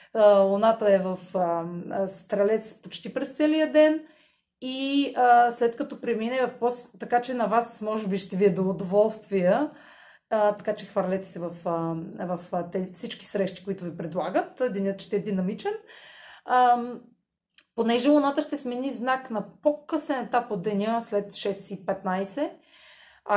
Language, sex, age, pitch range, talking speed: Bulgarian, female, 30-49, 190-250 Hz, 155 wpm